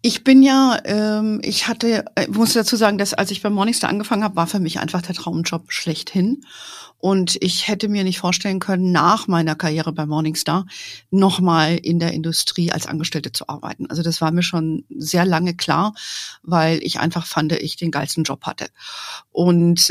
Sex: female